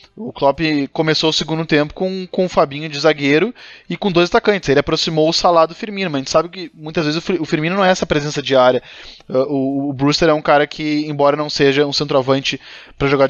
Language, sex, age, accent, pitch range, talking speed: Portuguese, male, 20-39, Brazilian, 140-165 Hz, 225 wpm